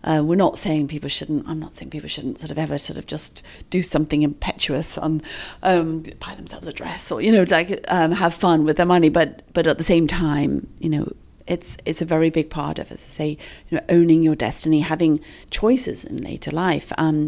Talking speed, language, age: 225 wpm, English, 40-59